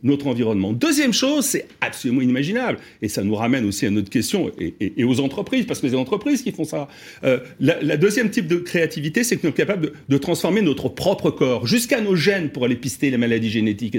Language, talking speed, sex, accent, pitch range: French, 235 wpm, male, French, 135-210 Hz